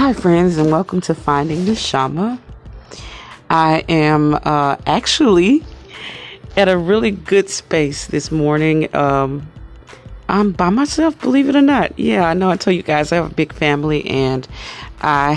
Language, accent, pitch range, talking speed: English, American, 145-180 Hz, 160 wpm